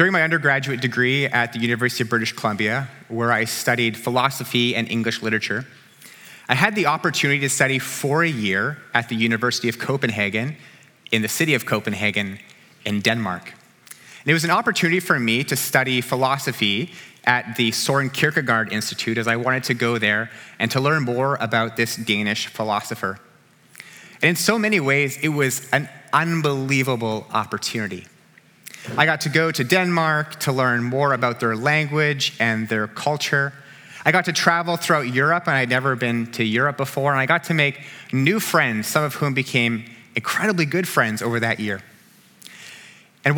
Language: English